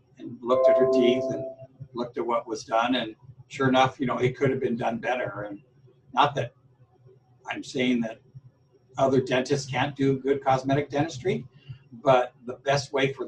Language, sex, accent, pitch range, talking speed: English, male, American, 120-135 Hz, 175 wpm